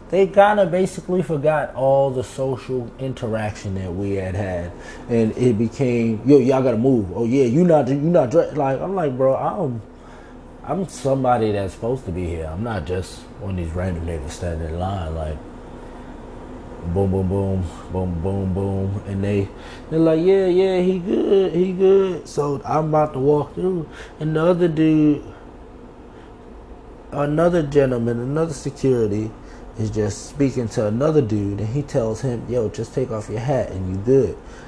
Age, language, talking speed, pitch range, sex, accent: 20-39, English, 170 wpm, 105-155 Hz, male, American